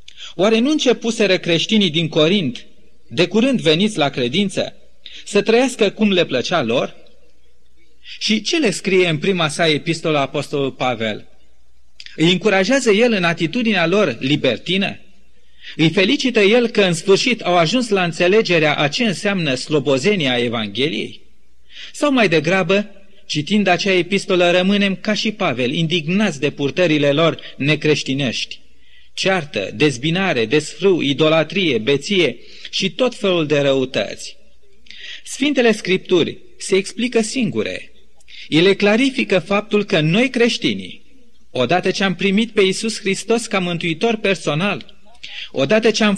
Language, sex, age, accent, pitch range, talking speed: Romanian, male, 30-49, native, 155-210 Hz, 125 wpm